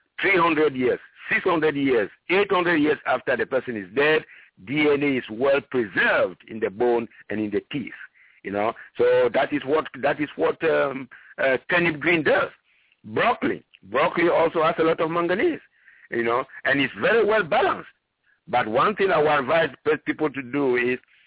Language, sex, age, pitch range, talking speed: English, male, 60-79, 120-155 Hz, 160 wpm